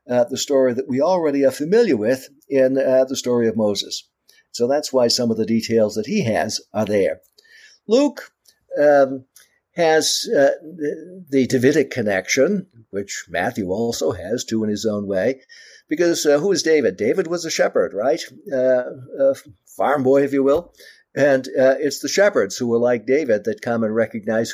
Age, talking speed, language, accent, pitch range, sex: 60-79, 180 wpm, English, American, 115-145 Hz, male